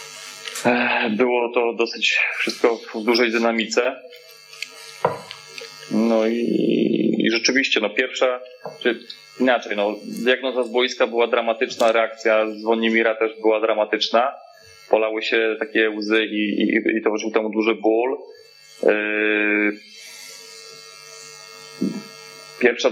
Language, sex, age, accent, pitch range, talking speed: Polish, male, 30-49, native, 105-120 Hz, 100 wpm